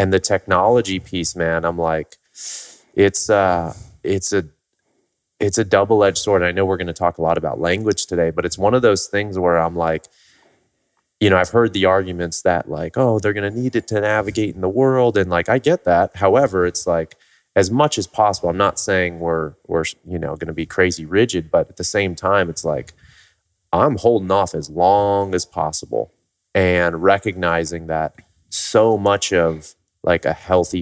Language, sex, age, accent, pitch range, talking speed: English, male, 30-49, American, 85-100 Hz, 200 wpm